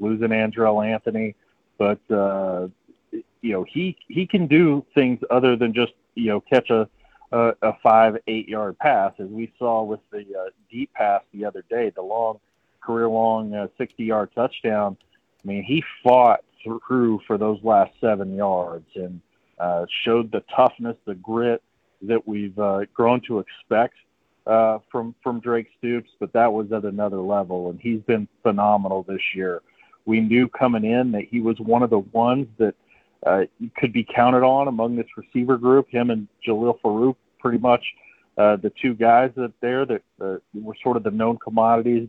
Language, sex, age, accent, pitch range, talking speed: English, male, 40-59, American, 105-120 Hz, 175 wpm